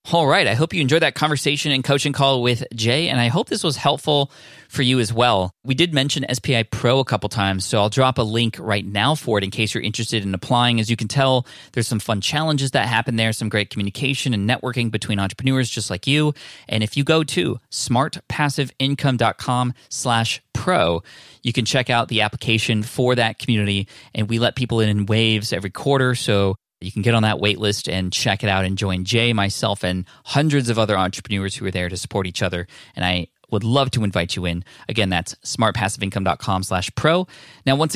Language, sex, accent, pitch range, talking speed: English, male, American, 105-130 Hz, 215 wpm